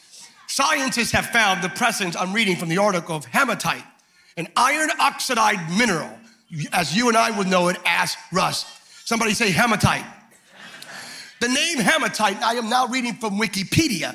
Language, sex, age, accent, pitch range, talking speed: English, male, 40-59, American, 185-255 Hz, 155 wpm